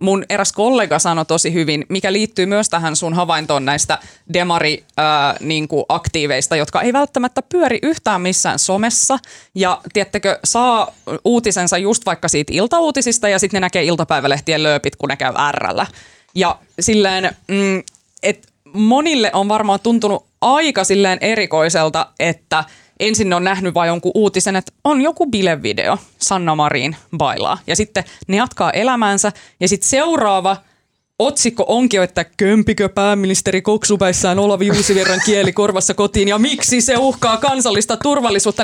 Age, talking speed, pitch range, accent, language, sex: 20-39, 145 wpm, 175-235 Hz, native, Finnish, female